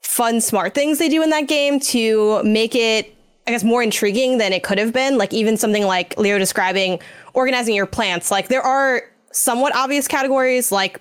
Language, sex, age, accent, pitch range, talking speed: English, female, 10-29, American, 195-245 Hz, 195 wpm